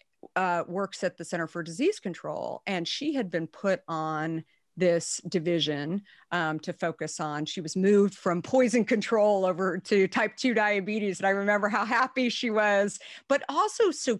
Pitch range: 165-215 Hz